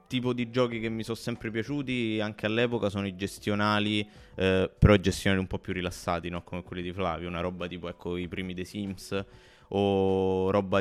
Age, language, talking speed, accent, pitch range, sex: 20-39, Italian, 195 wpm, native, 90-105 Hz, male